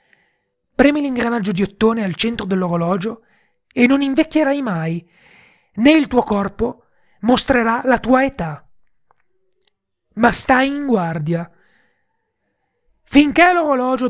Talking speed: 105 wpm